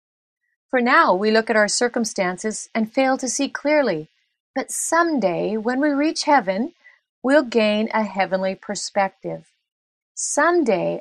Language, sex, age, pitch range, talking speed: English, female, 40-59, 195-270 Hz, 130 wpm